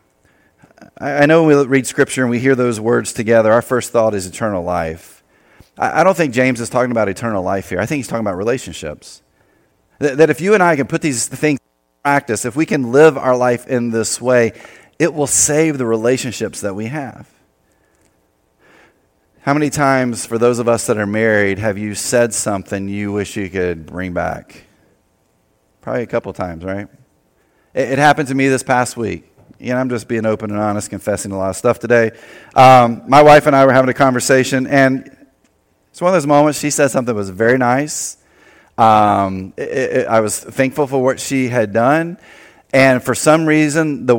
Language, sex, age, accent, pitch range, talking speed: English, male, 30-49, American, 110-145 Hz, 200 wpm